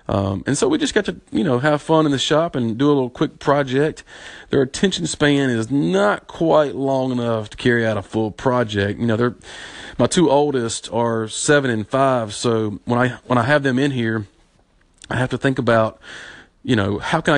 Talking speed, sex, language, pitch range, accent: 215 wpm, male, English, 110-135 Hz, American